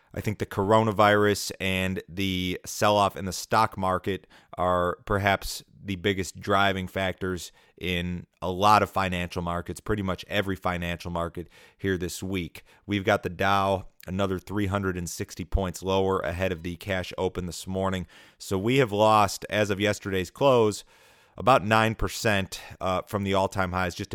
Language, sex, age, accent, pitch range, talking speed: English, male, 30-49, American, 90-100 Hz, 150 wpm